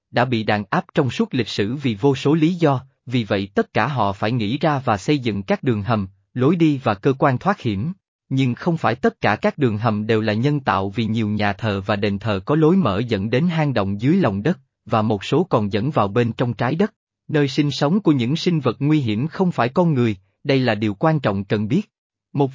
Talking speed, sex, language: 250 wpm, male, Vietnamese